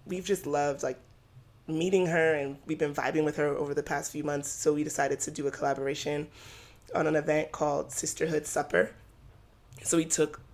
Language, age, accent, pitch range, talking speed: English, 20-39, American, 140-160 Hz, 190 wpm